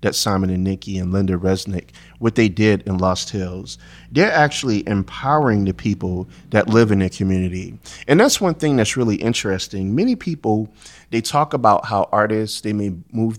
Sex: male